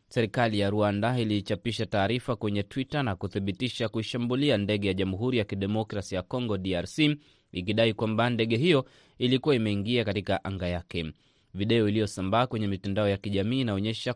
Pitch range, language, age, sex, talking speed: 100-125 Hz, Swahili, 20-39, male, 145 wpm